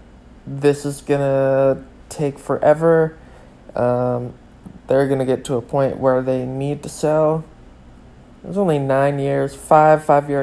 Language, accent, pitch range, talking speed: English, American, 125-155 Hz, 145 wpm